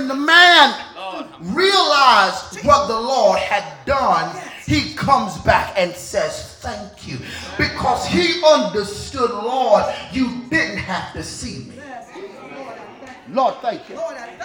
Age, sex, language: 30-49, male, English